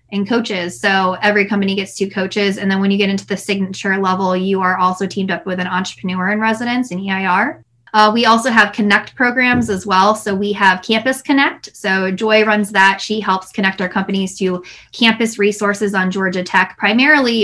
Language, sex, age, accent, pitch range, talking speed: English, female, 20-39, American, 175-205 Hz, 200 wpm